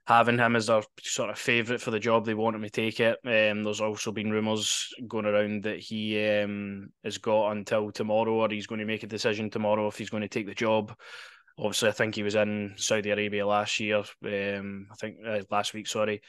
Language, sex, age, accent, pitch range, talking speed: English, male, 20-39, British, 105-115 Hz, 230 wpm